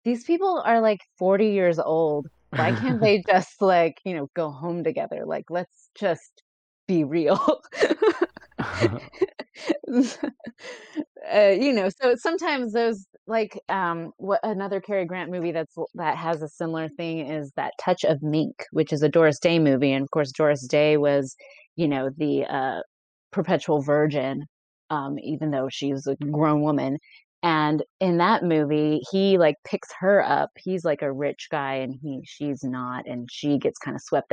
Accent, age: American, 20-39